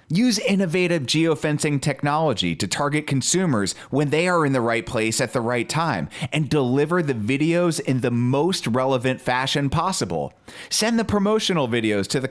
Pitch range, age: 115-165 Hz, 30-49